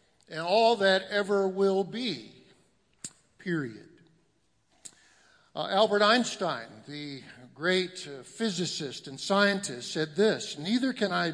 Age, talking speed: 50-69, 110 wpm